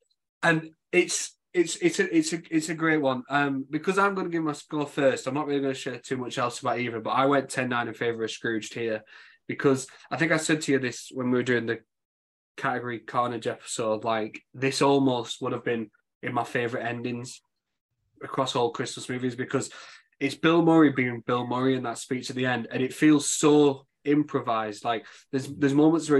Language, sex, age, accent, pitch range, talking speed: English, male, 20-39, British, 120-145 Hz, 215 wpm